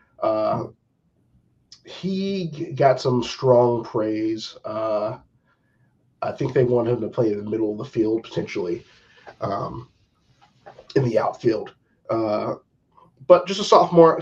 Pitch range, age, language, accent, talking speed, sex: 115-160 Hz, 30-49, English, American, 125 wpm, male